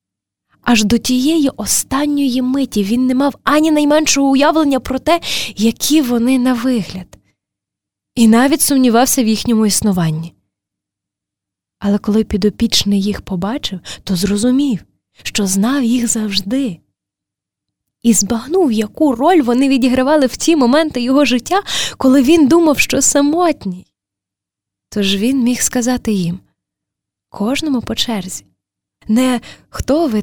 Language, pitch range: Ukrainian, 190-265 Hz